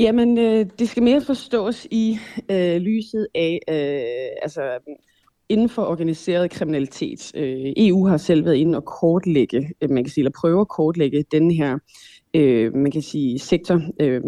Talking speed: 145 wpm